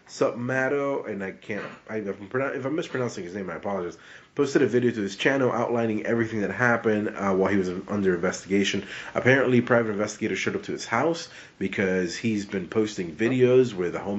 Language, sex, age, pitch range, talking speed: English, male, 30-49, 100-125 Hz, 200 wpm